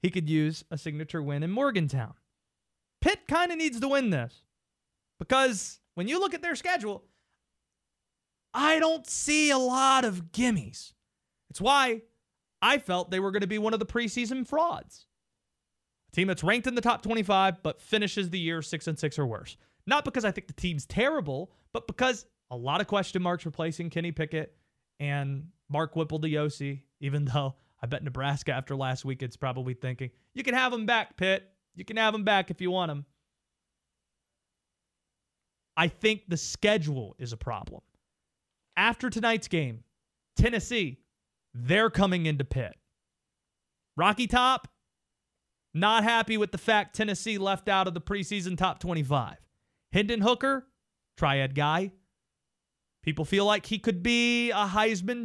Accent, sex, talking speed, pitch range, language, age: American, male, 165 wpm, 155-230 Hz, English, 30-49